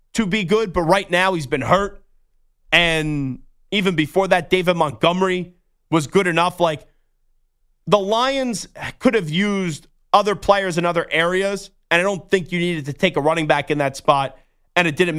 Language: English